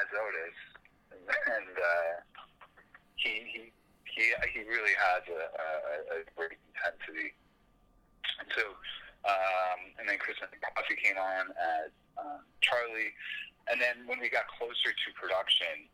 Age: 30-49